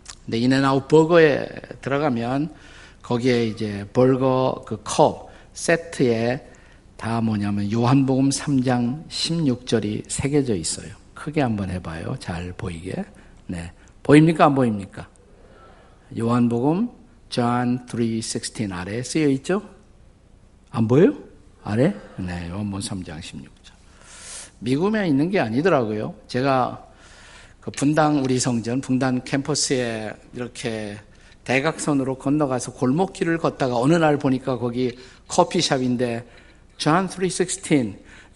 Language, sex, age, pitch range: Korean, male, 50-69, 105-145 Hz